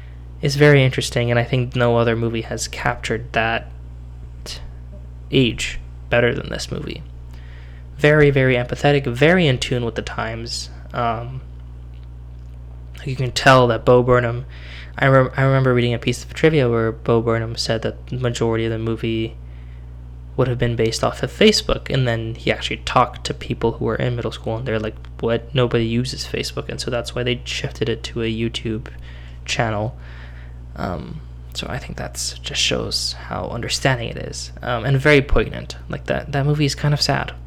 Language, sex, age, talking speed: English, male, 10-29, 180 wpm